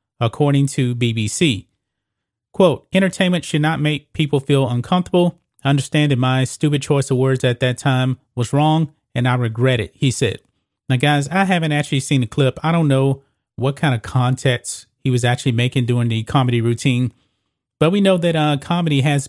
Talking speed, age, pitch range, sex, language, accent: 185 wpm, 30-49, 125-150 Hz, male, English, American